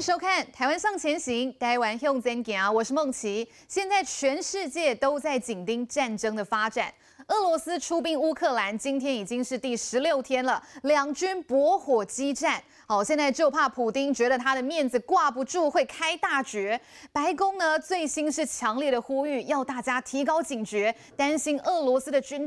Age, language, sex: 20-39, Chinese, female